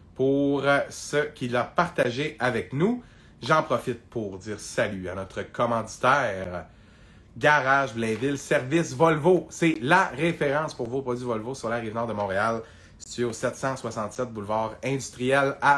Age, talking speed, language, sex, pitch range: 30-49, 140 wpm, French, male, 110-170 Hz